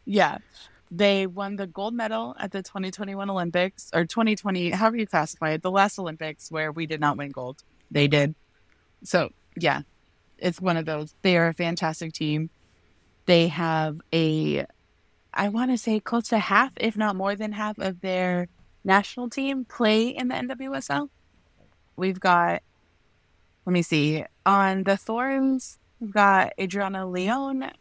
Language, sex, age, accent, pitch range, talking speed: English, female, 20-39, American, 170-215 Hz, 160 wpm